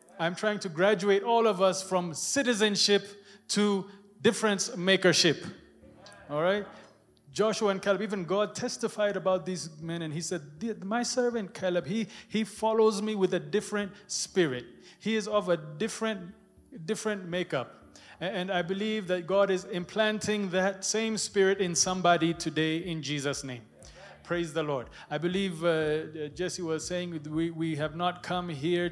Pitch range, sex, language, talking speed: 175-210 Hz, male, English, 155 wpm